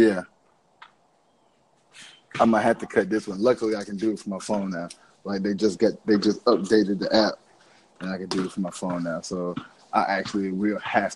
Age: 20-39